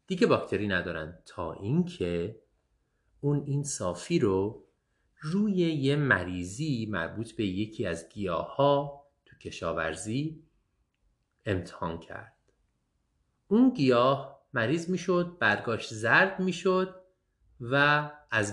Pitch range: 100-155 Hz